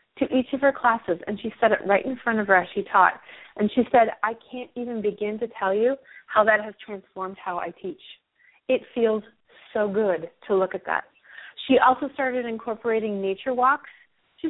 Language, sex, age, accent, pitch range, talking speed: English, female, 30-49, American, 200-280 Hz, 205 wpm